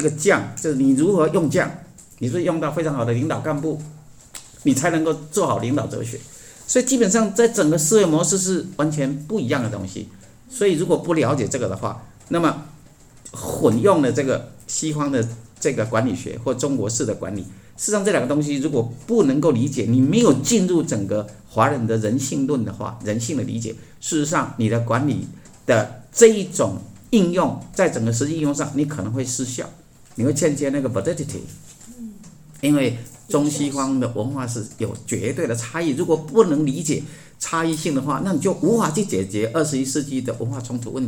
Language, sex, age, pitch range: Chinese, male, 50-69, 120-160 Hz